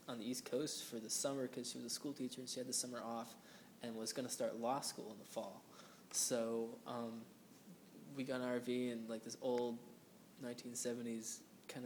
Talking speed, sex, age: 205 wpm, male, 20-39